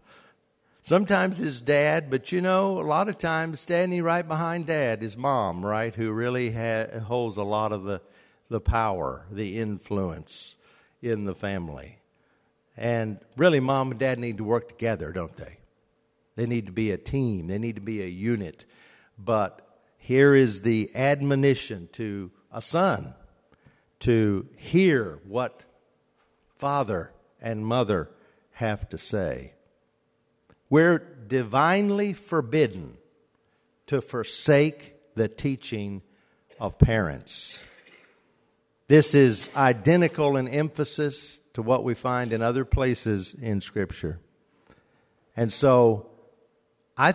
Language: English